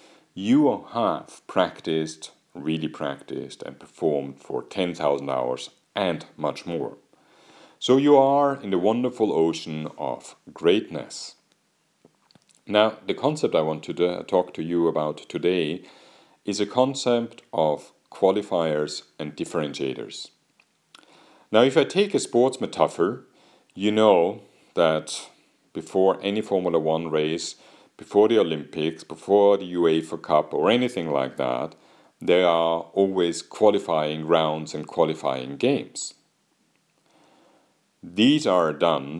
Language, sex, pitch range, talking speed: English, male, 80-115 Hz, 120 wpm